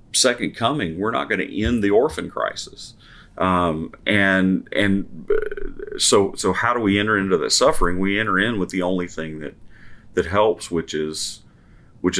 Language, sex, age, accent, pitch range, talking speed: English, male, 40-59, American, 85-100 Hz, 170 wpm